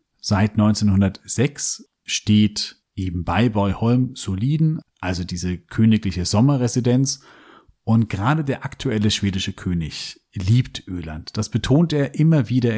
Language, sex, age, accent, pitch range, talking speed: German, male, 40-59, German, 100-125 Hz, 115 wpm